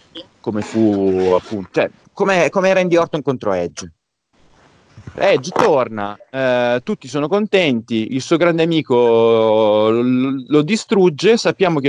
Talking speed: 120 wpm